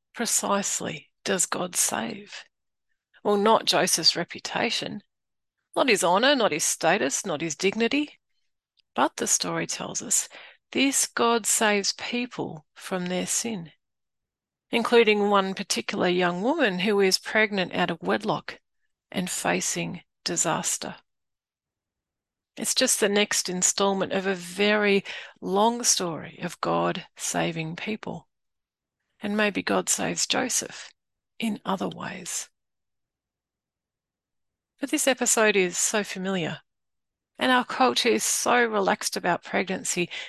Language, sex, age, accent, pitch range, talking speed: English, female, 40-59, Australian, 185-235 Hz, 120 wpm